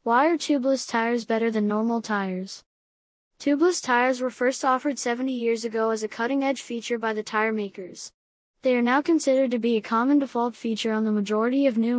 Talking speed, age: 195 wpm, 20-39